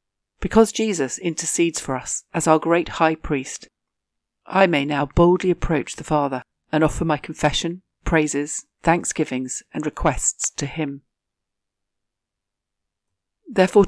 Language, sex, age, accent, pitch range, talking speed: English, female, 50-69, British, 140-175 Hz, 120 wpm